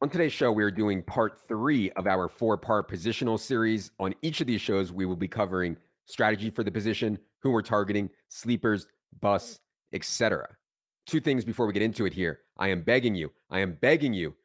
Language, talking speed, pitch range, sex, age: English, 200 wpm, 95-115 Hz, male, 30-49